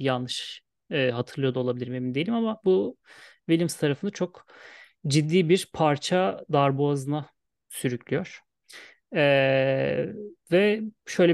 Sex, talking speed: male, 105 wpm